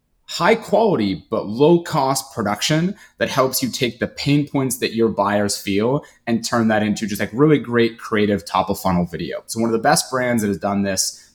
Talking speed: 210 wpm